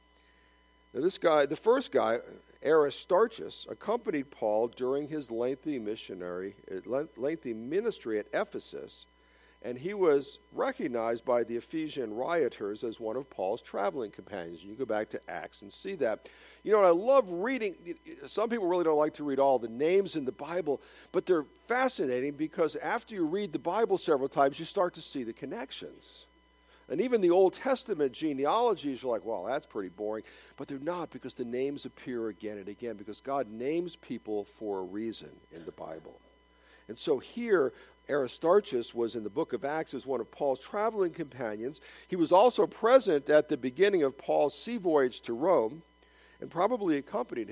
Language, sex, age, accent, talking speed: English, male, 50-69, American, 175 wpm